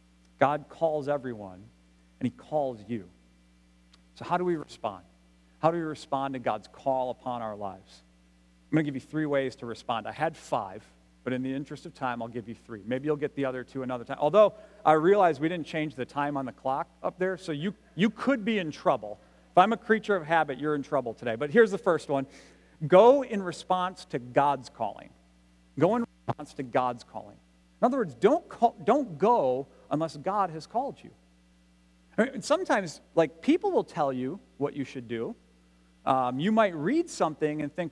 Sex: male